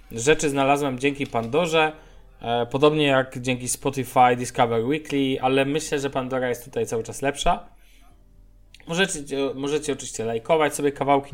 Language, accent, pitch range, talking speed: Polish, native, 125-155 Hz, 130 wpm